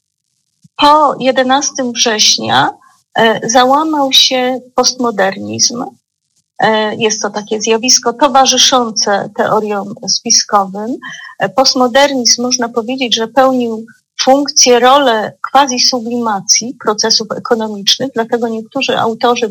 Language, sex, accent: Polish, female, native